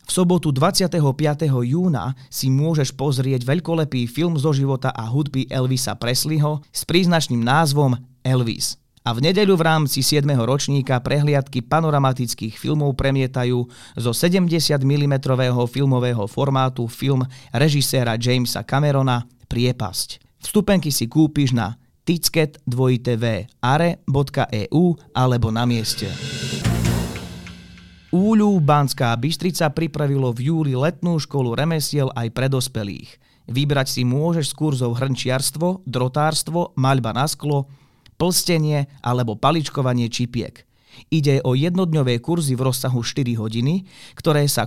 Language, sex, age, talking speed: Slovak, male, 30-49, 115 wpm